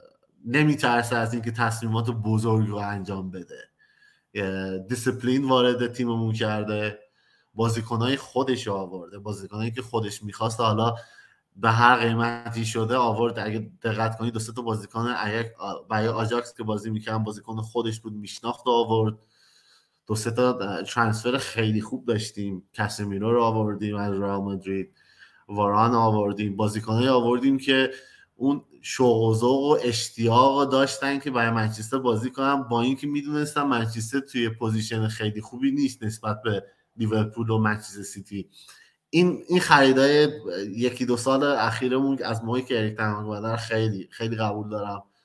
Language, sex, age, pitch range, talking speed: Persian, male, 20-39, 110-130 Hz, 135 wpm